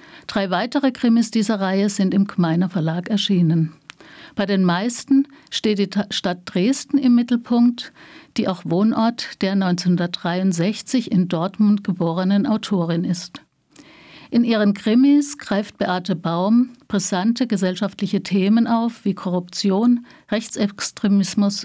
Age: 60-79